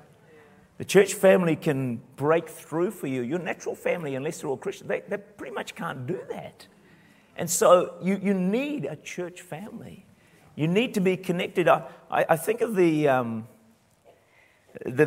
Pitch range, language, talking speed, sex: 150-205 Hz, English, 165 wpm, male